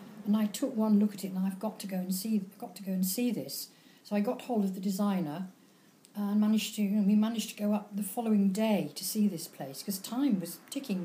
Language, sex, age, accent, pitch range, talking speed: English, female, 50-69, British, 195-240 Hz, 260 wpm